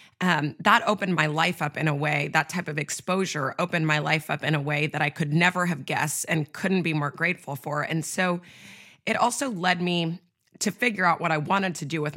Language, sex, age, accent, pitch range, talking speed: English, female, 20-39, American, 150-185 Hz, 230 wpm